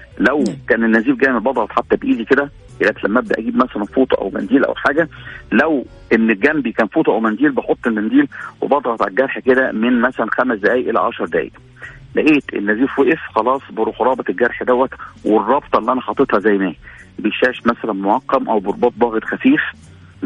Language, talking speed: Arabic, 180 wpm